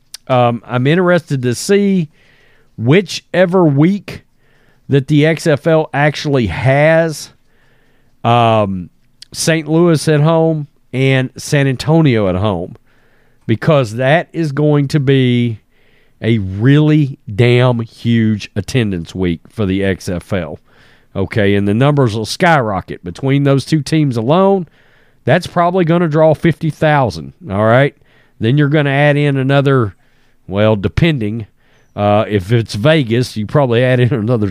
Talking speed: 130 wpm